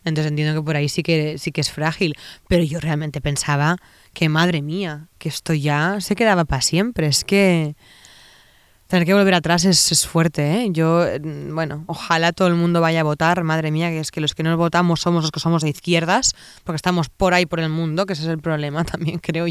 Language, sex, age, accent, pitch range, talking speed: Spanish, female, 20-39, Spanish, 150-175 Hz, 225 wpm